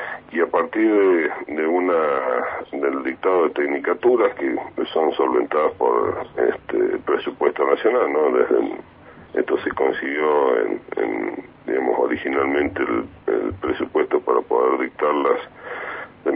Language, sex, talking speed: Spanish, male, 125 wpm